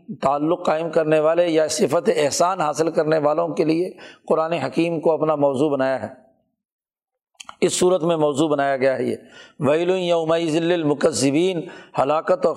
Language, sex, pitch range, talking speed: Urdu, male, 150-185 Hz, 160 wpm